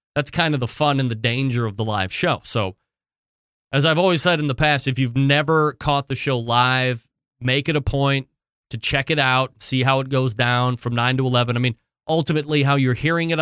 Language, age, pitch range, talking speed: English, 30-49, 115-145 Hz, 230 wpm